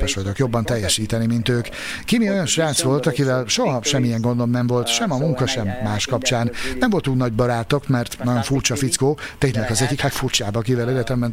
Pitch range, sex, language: 120-145 Hz, male, Hungarian